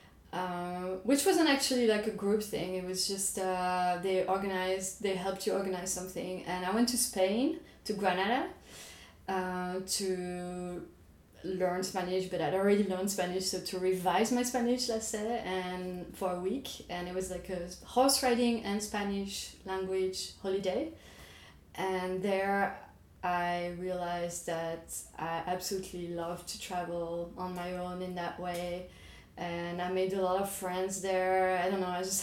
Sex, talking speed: female, 160 wpm